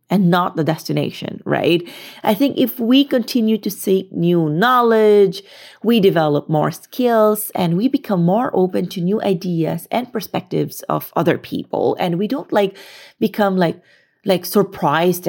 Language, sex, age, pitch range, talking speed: English, female, 30-49, 155-205 Hz, 155 wpm